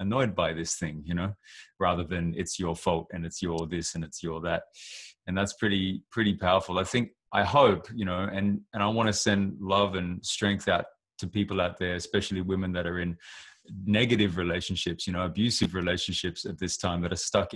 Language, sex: English, male